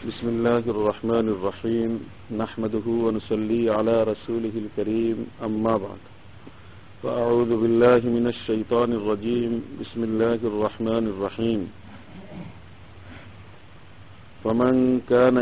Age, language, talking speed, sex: 50-69, Bengali, 90 wpm, male